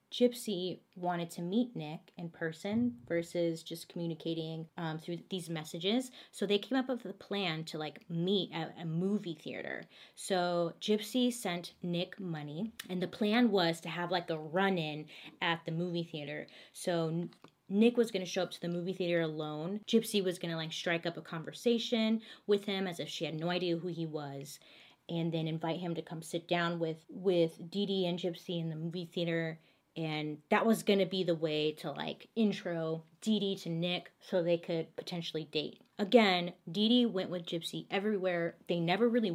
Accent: American